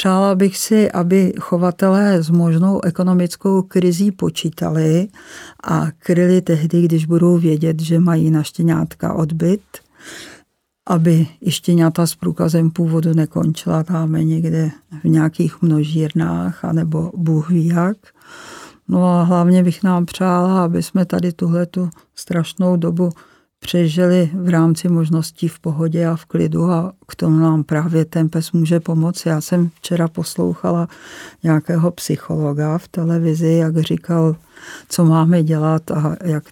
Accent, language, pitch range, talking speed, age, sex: native, Czech, 160-180 Hz, 130 wpm, 50-69, female